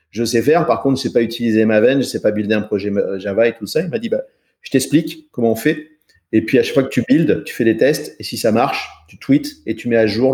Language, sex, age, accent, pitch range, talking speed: French, male, 40-59, French, 115-150 Hz, 310 wpm